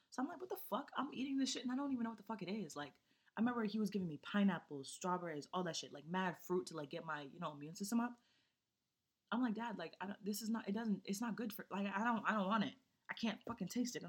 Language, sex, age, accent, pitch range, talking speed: English, female, 20-39, American, 155-210 Hz, 305 wpm